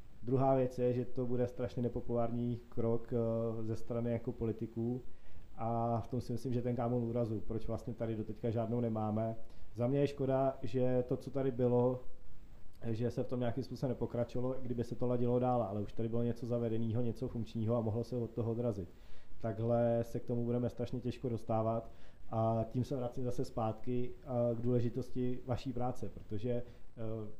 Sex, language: male, Czech